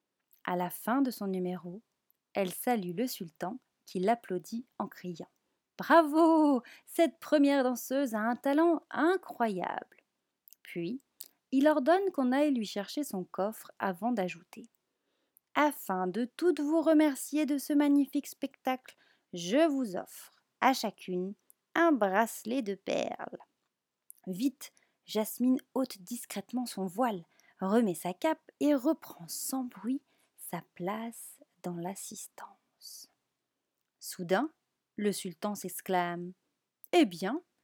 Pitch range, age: 195-290 Hz, 30-49